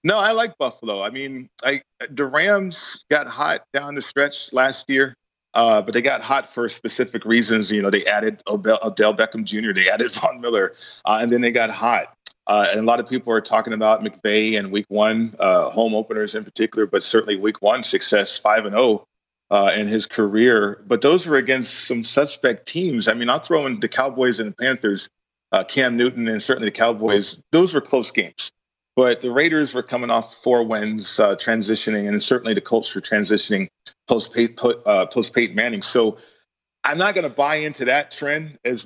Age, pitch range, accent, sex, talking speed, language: 40-59, 110-130 Hz, American, male, 200 wpm, English